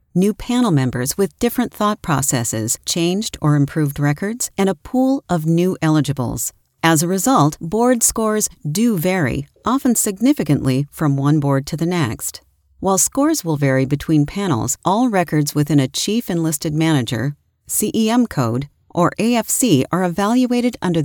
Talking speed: 150 wpm